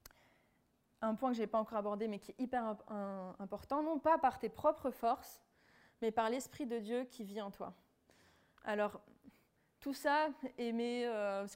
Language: French